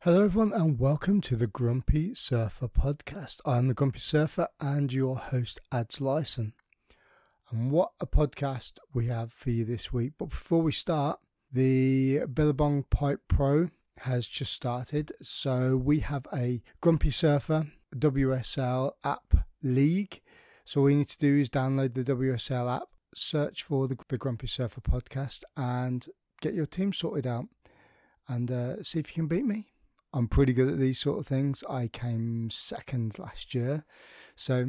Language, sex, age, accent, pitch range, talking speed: English, male, 30-49, British, 125-150 Hz, 165 wpm